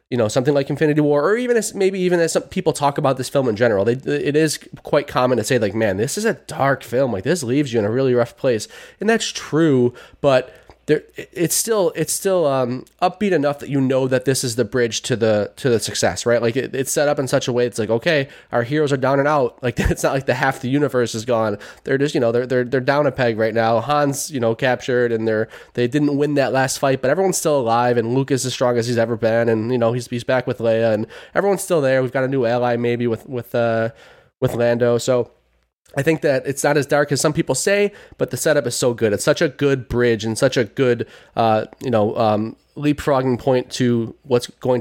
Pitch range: 115-140 Hz